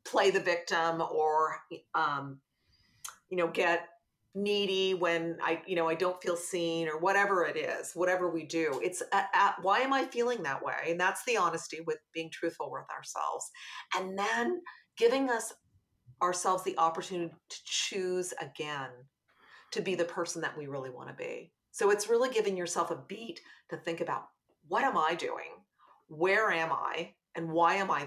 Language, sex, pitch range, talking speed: English, female, 165-250 Hz, 175 wpm